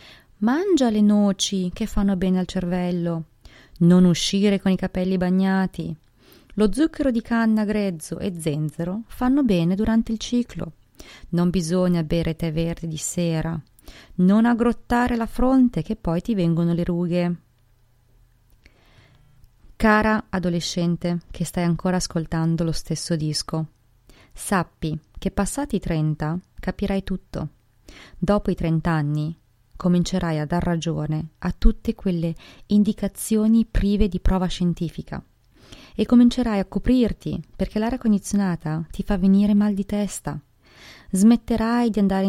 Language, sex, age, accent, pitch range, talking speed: Italian, female, 30-49, native, 160-195 Hz, 130 wpm